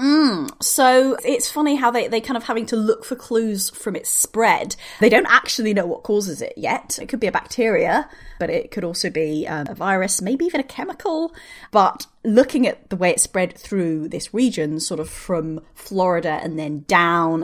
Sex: female